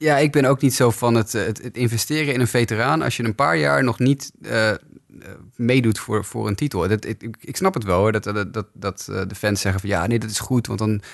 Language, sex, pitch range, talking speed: Dutch, male, 110-140 Hz, 265 wpm